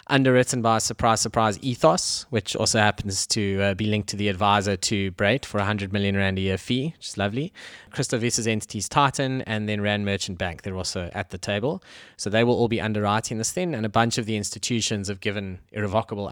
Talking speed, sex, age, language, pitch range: 220 wpm, male, 20-39, English, 100-120 Hz